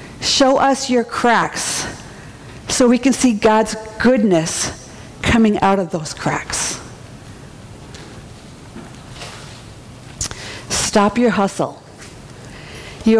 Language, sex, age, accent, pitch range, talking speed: English, female, 50-69, American, 180-240 Hz, 85 wpm